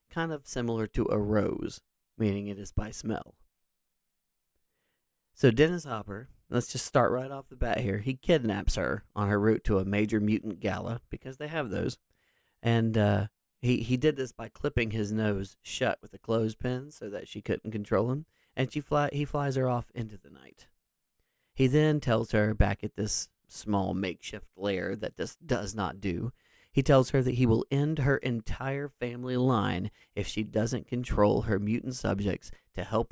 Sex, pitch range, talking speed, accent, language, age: male, 105-125 Hz, 185 wpm, American, English, 40-59